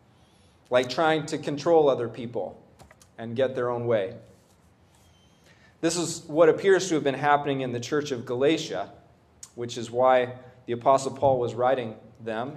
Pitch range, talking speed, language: 120-160 Hz, 160 wpm, English